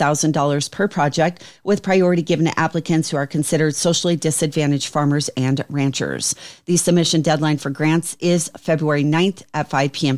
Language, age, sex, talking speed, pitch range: English, 40-59, female, 165 wpm, 150-175 Hz